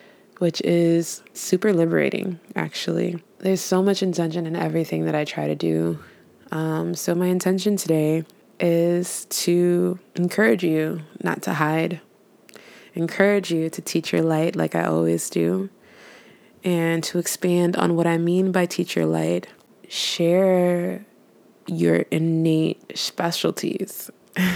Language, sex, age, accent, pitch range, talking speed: English, female, 20-39, American, 165-200 Hz, 130 wpm